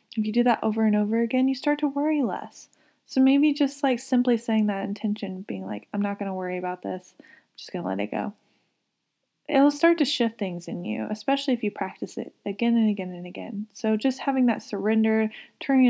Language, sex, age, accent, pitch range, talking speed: English, female, 20-39, American, 205-245 Hz, 225 wpm